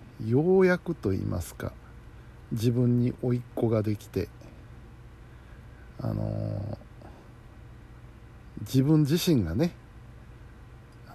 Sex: male